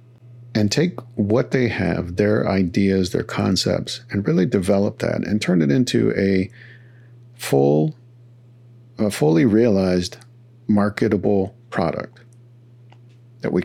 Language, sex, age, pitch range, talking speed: English, male, 50-69, 100-120 Hz, 115 wpm